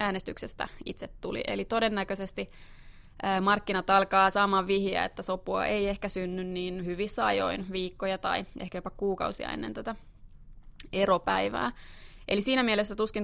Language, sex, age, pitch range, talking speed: Finnish, female, 20-39, 185-205 Hz, 130 wpm